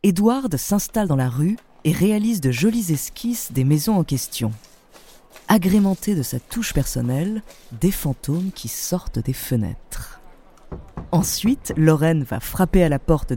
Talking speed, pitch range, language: 145 wpm, 130-210 Hz, French